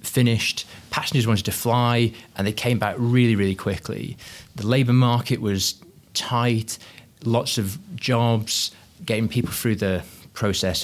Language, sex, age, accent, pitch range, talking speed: English, male, 30-49, British, 95-115 Hz, 140 wpm